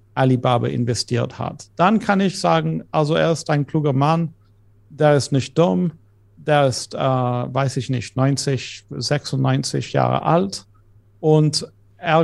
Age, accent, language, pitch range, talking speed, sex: 50-69, German, German, 125-155 Hz, 140 wpm, male